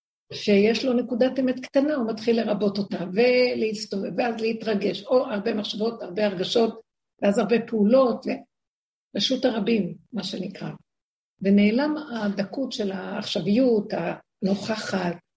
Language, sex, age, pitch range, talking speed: Hebrew, female, 50-69, 195-250 Hz, 115 wpm